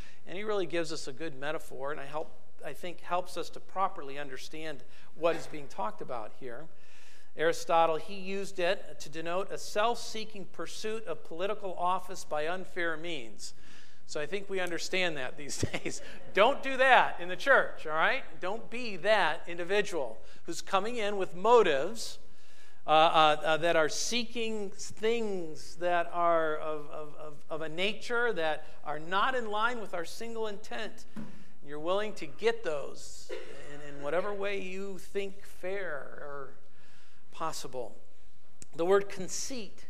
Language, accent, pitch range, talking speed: English, American, 160-215 Hz, 155 wpm